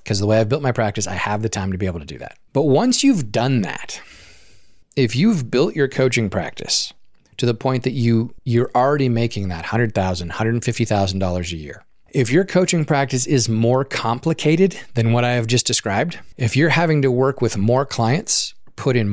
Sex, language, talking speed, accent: male, English, 200 wpm, American